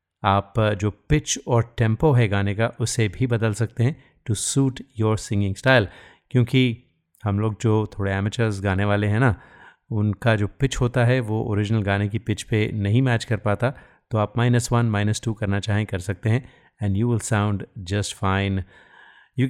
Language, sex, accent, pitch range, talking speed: Hindi, male, native, 100-120 Hz, 190 wpm